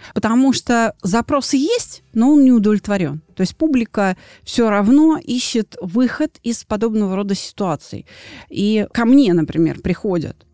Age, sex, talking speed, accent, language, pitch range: 30-49, female, 135 wpm, native, Russian, 170-235 Hz